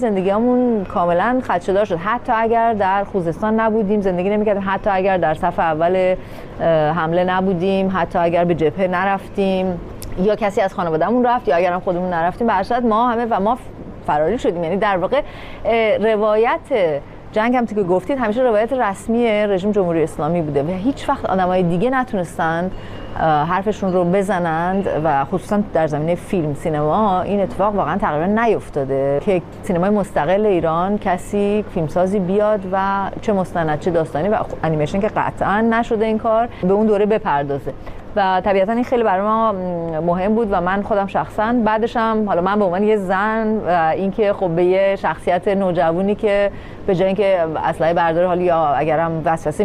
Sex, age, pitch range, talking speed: female, 30-49, 175-215 Hz, 160 wpm